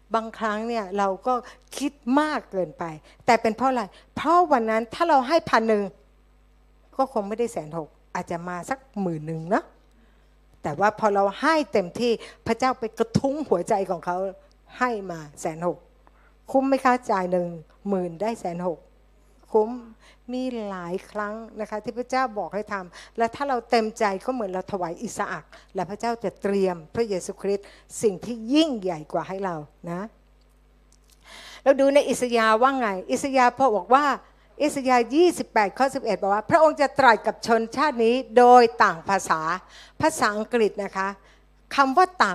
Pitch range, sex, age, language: 190-255 Hz, female, 60-79, Thai